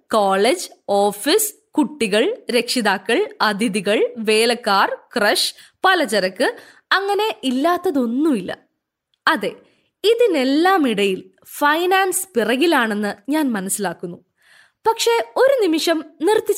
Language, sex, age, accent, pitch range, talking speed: Malayalam, female, 20-39, native, 260-430 Hz, 75 wpm